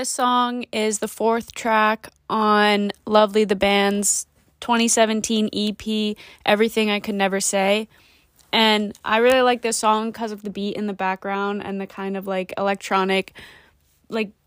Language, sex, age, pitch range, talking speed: English, female, 20-39, 200-225 Hz, 155 wpm